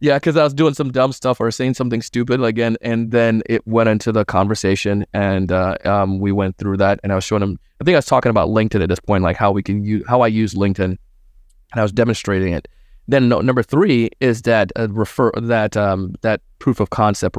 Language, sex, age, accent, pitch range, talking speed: English, male, 20-39, American, 95-115 Hz, 245 wpm